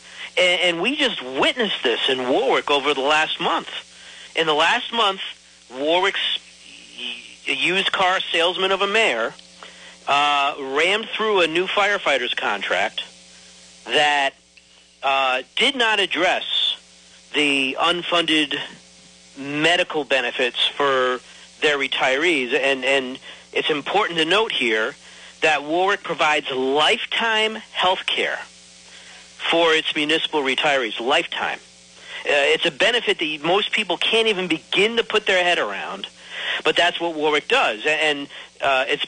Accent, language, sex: American, English, male